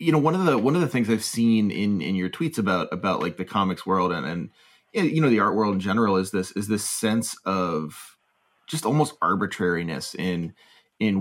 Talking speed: 220 wpm